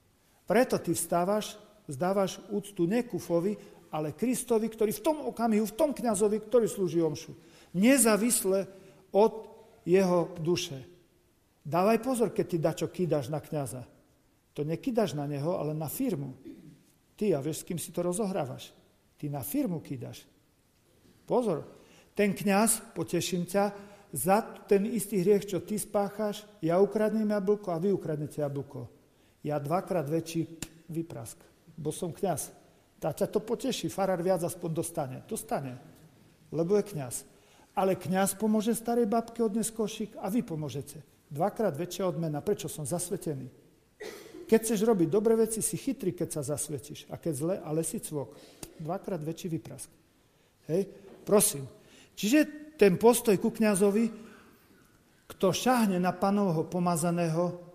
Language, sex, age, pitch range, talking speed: Slovak, male, 50-69, 165-215 Hz, 140 wpm